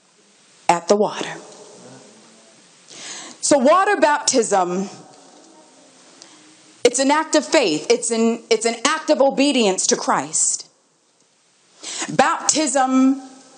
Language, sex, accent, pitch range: English, female, American, 205-265 Hz